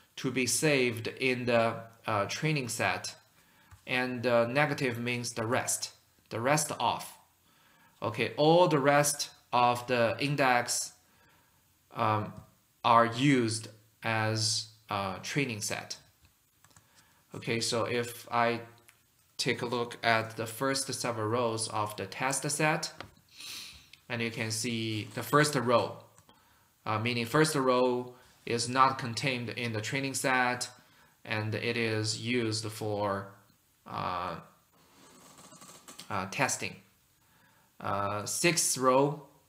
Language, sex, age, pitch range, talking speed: English, male, 20-39, 110-130 Hz, 115 wpm